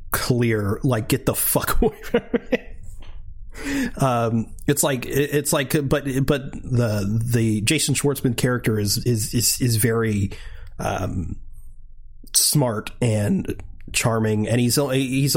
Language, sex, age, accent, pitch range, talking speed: English, male, 30-49, American, 100-130 Hz, 125 wpm